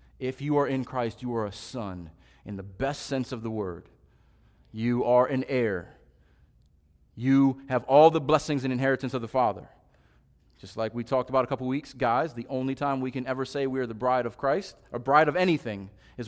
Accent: American